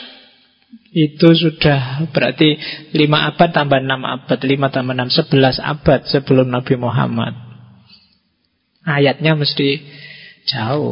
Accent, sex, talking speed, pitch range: native, male, 105 wpm, 140-165 Hz